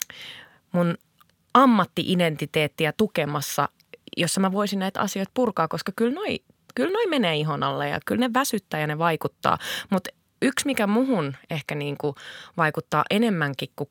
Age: 20-39